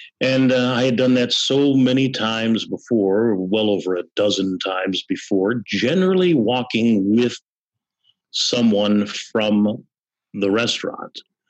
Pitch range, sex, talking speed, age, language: 100-135 Hz, male, 120 wpm, 50-69, English